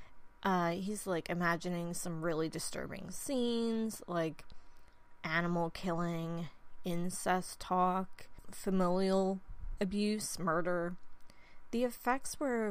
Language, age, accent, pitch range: English, 20-39, American, 175-220 Hz